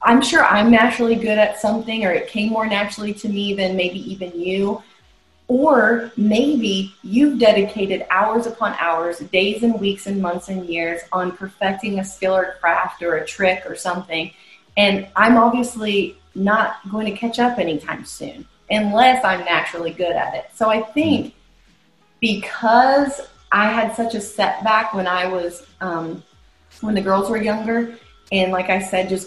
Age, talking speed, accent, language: 30-49, 170 wpm, American, English